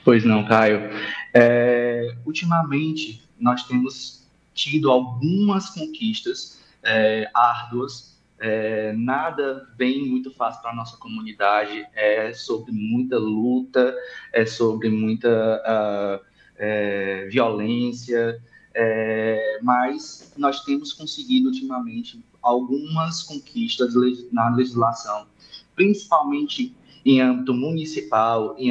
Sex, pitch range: male, 115-155 Hz